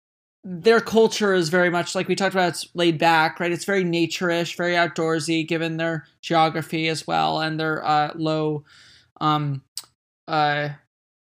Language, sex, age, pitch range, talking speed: English, male, 20-39, 155-180 Hz, 155 wpm